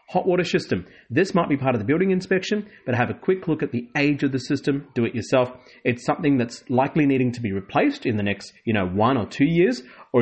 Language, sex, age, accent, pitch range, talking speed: English, male, 30-49, Australian, 105-135 Hz, 255 wpm